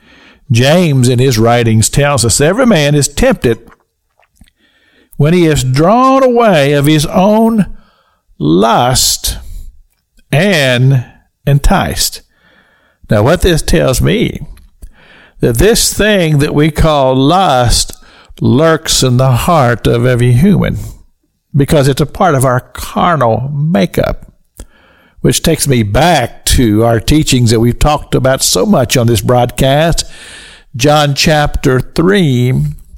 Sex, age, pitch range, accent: male, 50-69, 120-160 Hz, American